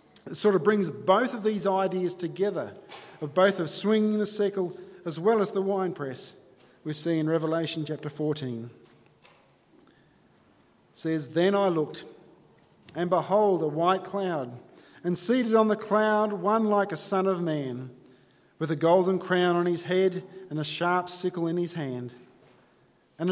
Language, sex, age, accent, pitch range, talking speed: English, male, 40-59, Australian, 155-200 Hz, 160 wpm